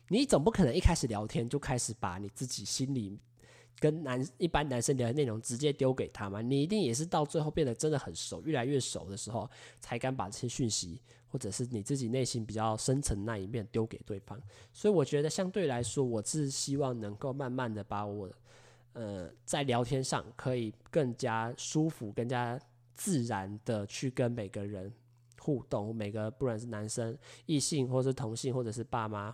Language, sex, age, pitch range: Chinese, male, 20-39, 110-135 Hz